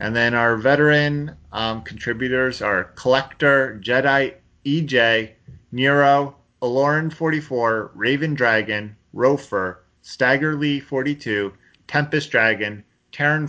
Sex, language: male, English